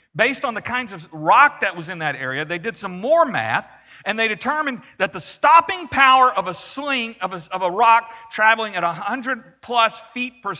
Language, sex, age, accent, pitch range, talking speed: English, male, 50-69, American, 160-230 Hz, 205 wpm